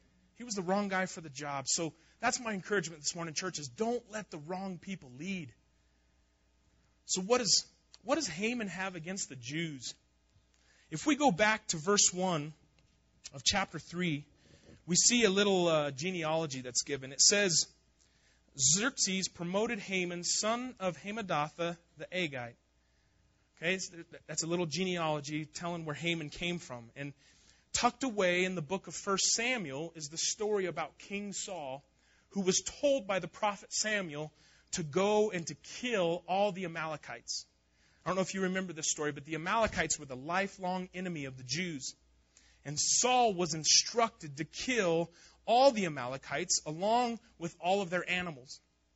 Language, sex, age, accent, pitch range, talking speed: English, male, 30-49, American, 145-195 Hz, 165 wpm